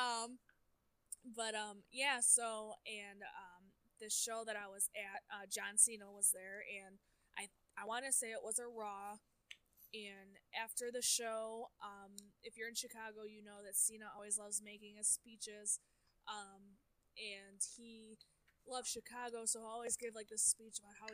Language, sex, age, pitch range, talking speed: English, female, 10-29, 210-255 Hz, 170 wpm